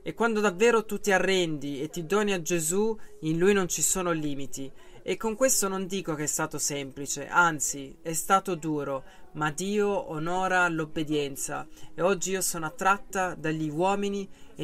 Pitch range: 155-195 Hz